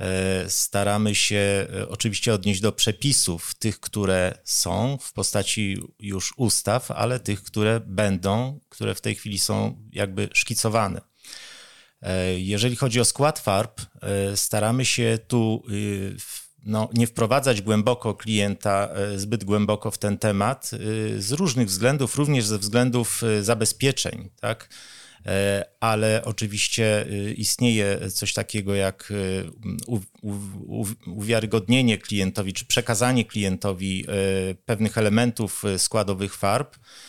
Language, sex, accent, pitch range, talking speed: Polish, male, native, 100-120 Hz, 105 wpm